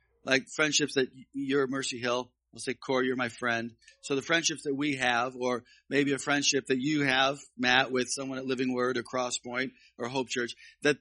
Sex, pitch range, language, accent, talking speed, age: male, 115-145 Hz, English, American, 215 wpm, 40-59